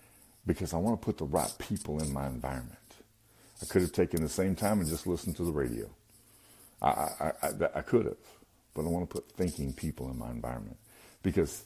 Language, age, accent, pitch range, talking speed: English, 50-69, American, 85-110 Hz, 210 wpm